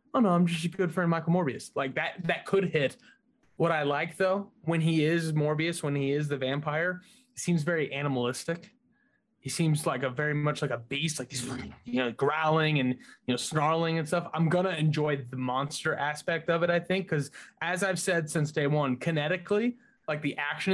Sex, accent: male, American